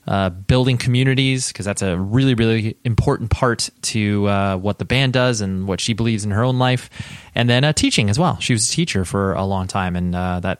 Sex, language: male, English